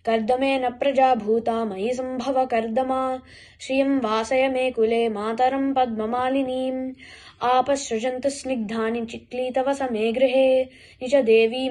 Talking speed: 60 wpm